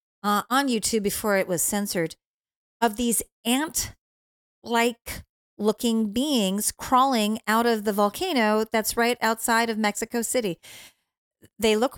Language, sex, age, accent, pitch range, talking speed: English, female, 40-59, American, 200-265 Hz, 125 wpm